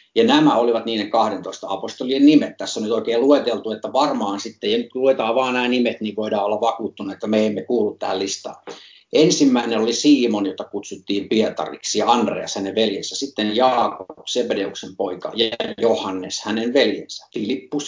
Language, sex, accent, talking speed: Finnish, male, native, 170 wpm